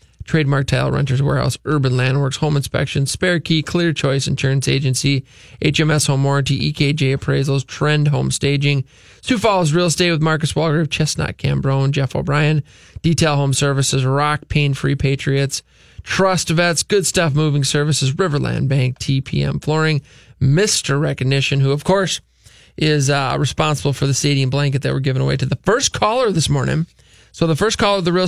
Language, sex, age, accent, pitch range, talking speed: English, male, 20-39, American, 135-160 Hz, 170 wpm